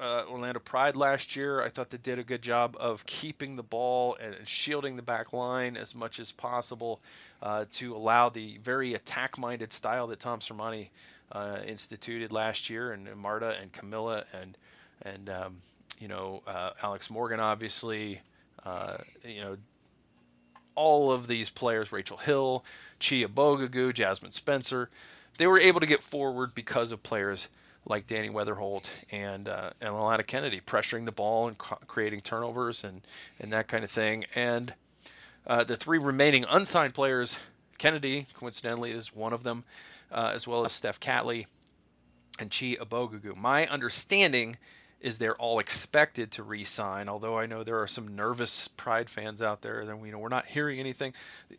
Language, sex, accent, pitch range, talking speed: English, male, American, 105-125 Hz, 170 wpm